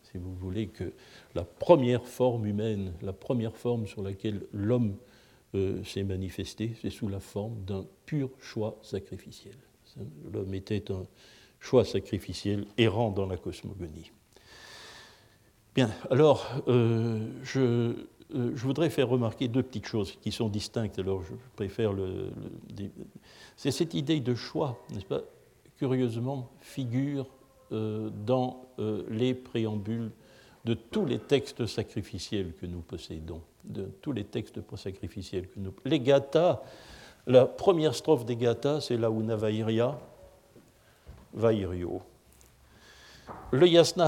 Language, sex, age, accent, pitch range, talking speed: French, male, 60-79, French, 100-130 Hz, 130 wpm